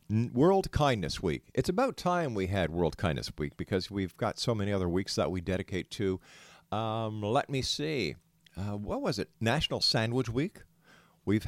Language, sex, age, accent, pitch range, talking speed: English, male, 50-69, American, 95-130 Hz, 180 wpm